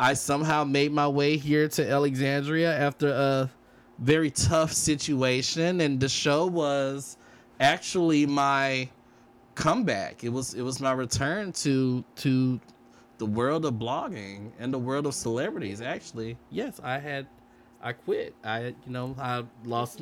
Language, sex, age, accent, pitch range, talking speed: English, male, 20-39, American, 105-135 Hz, 145 wpm